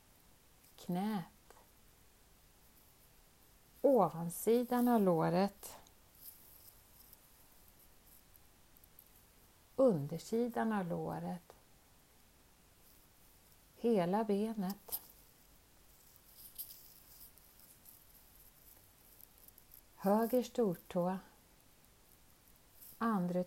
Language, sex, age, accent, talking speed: Swedish, female, 50-69, native, 30 wpm